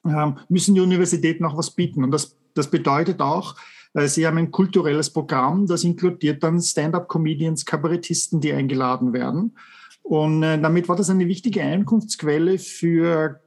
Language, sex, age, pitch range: English, male, 50-69, 155-185 Hz